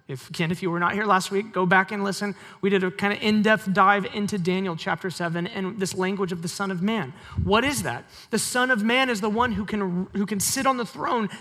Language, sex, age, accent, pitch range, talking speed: English, male, 30-49, American, 185-230 Hz, 265 wpm